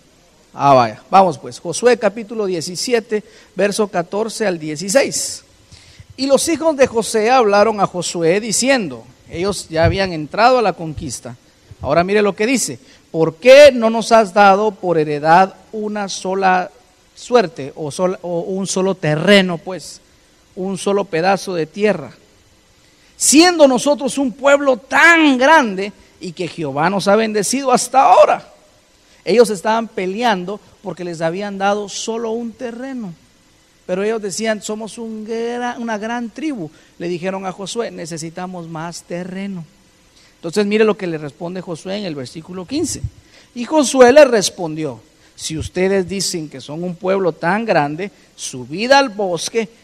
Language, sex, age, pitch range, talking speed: Spanish, male, 50-69, 170-230 Hz, 145 wpm